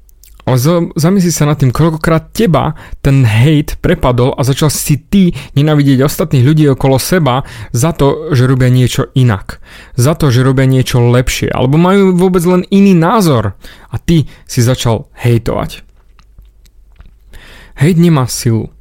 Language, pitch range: Slovak, 125-155 Hz